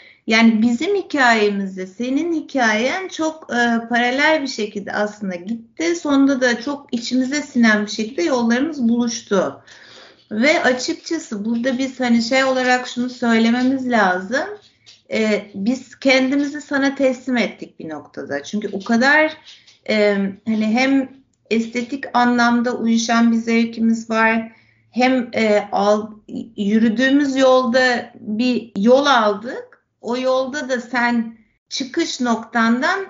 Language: Turkish